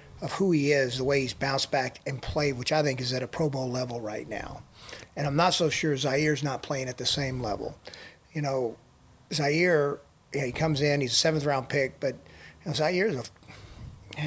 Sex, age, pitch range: male, 40-59, 135-155 Hz